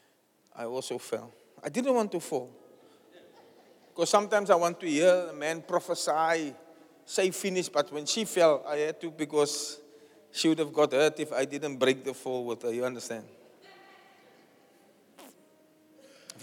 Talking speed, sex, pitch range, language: 155 wpm, male, 140-185 Hz, English